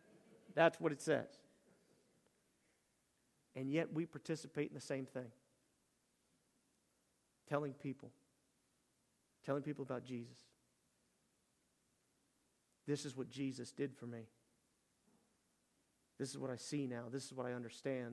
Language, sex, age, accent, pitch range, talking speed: English, male, 40-59, American, 135-190 Hz, 120 wpm